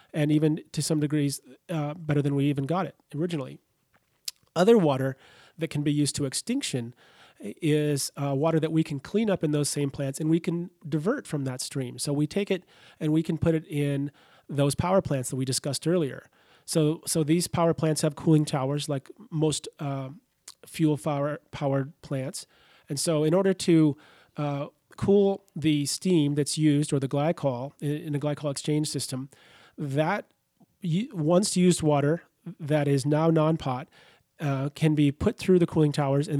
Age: 30-49